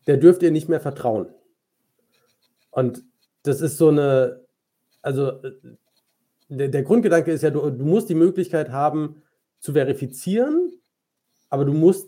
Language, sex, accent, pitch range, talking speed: German, male, German, 130-165 Hz, 140 wpm